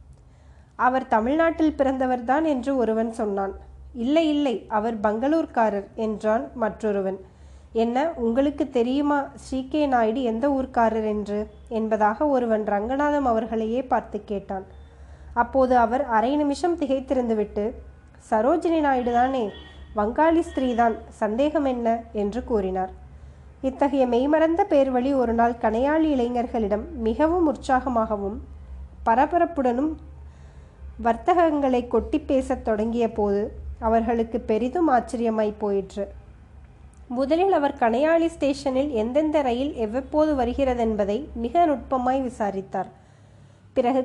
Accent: native